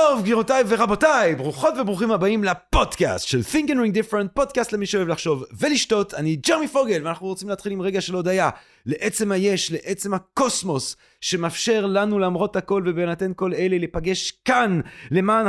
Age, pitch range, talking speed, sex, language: 30-49, 165-245 Hz, 160 wpm, male, Hebrew